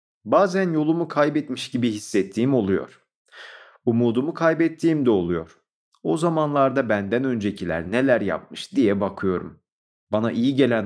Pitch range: 95-150 Hz